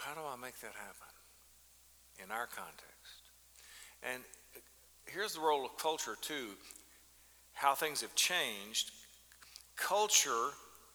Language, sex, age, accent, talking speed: English, male, 50-69, American, 115 wpm